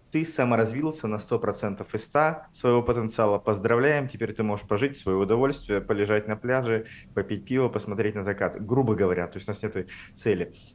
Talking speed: 180 wpm